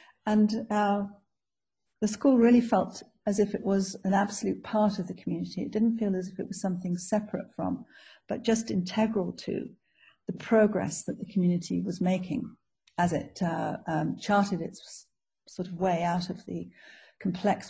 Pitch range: 185-215 Hz